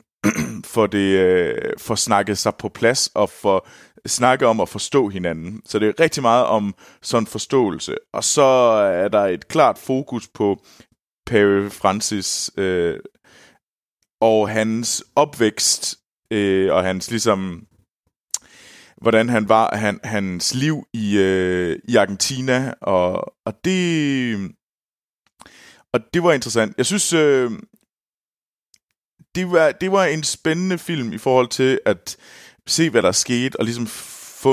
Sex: male